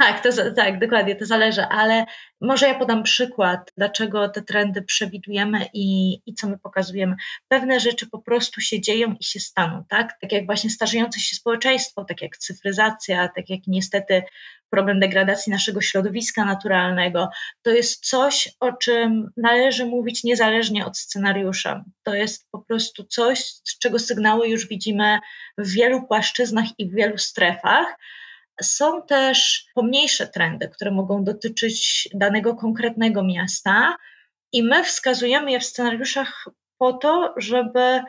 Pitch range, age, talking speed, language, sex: 200-240 Hz, 20-39, 145 wpm, Polish, female